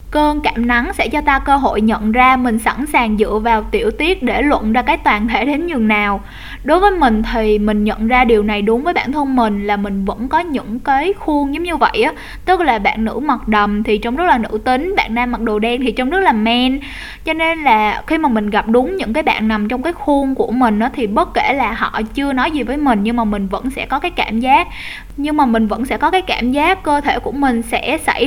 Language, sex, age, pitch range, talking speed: Vietnamese, female, 10-29, 225-305 Hz, 265 wpm